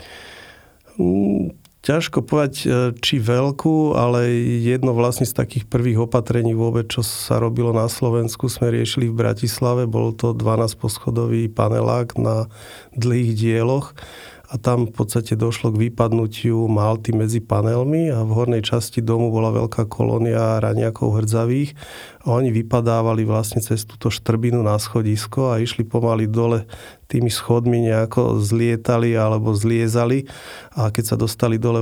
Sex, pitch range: male, 110-120 Hz